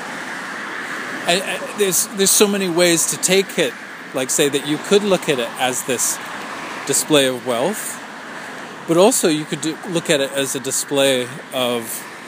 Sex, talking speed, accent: male, 165 wpm, American